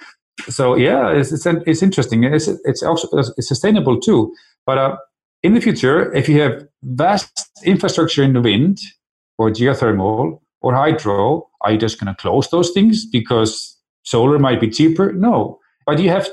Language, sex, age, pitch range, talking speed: English, male, 40-59, 120-170 Hz, 175 wpm